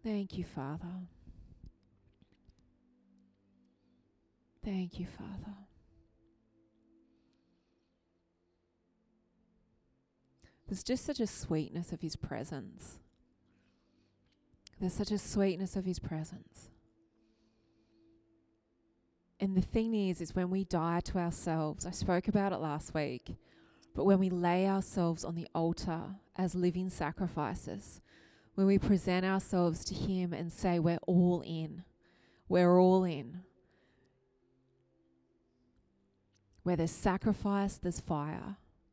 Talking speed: 105 wpm